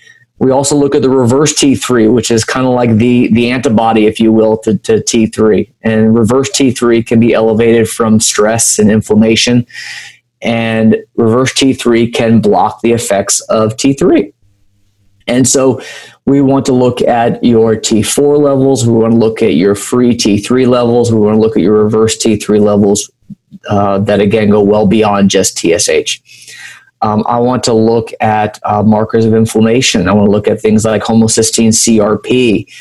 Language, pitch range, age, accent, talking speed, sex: English, 105-120 Hz, 30-49, American, 175 wpm, male